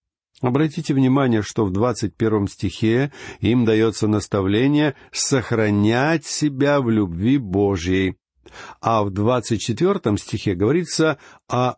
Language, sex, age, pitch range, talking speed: Russian, male, 60-79, 105-140 Hz, 110 wpm